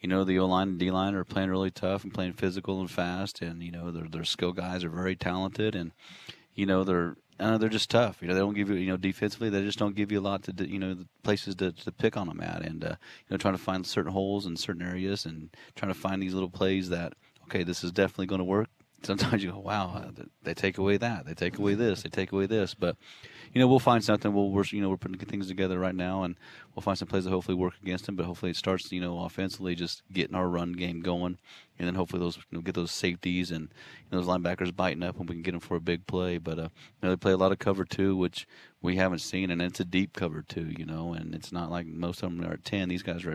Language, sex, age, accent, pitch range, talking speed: English, male, 30-49, American, 90-95 Hz, 280 wpm